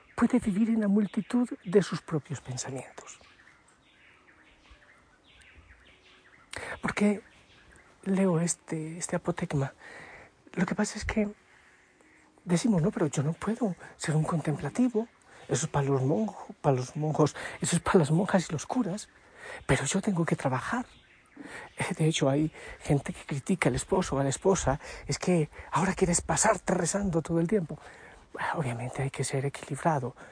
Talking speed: 150 wpm